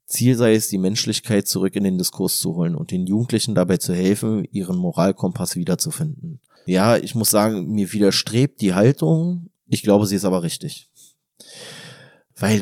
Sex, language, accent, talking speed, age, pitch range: male, German, German, 165 wpm, 30-49, 95-125 Hz